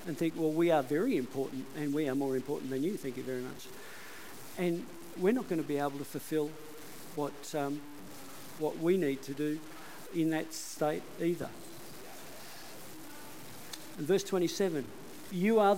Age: 50-69